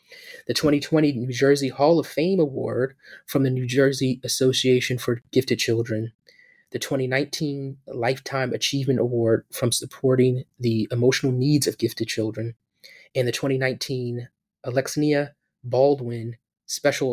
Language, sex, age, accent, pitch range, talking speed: English, male, 20-39, American, 120-135 Hz, 125 wpm